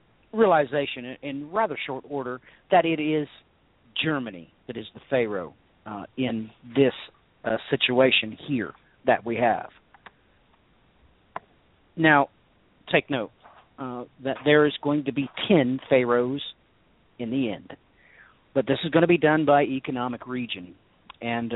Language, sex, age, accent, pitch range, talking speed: English, male, 40-59, American, 115-145 Hz, 135 wpm